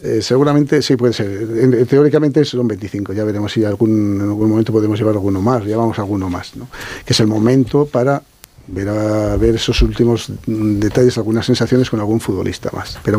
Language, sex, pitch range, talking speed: Spanish, male, 105-125 Hz, 195 wpm